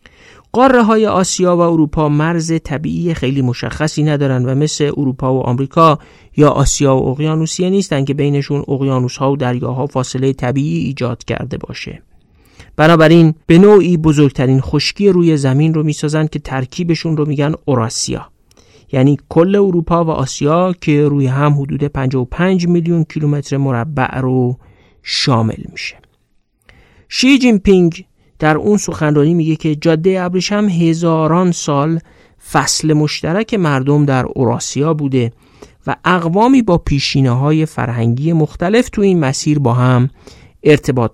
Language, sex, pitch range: Persian, male, 130-165 Hz